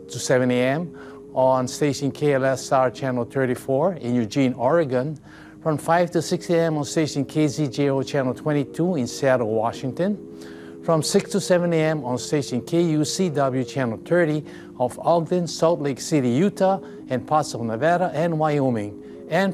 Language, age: English, 50-69